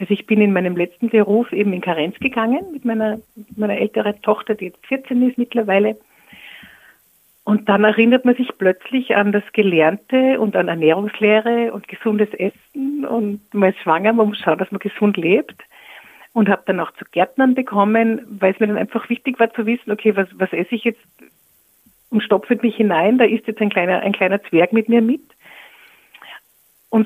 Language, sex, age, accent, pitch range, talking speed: German, female, 50-69, Austrian, 195-235 Hz, 190 wpm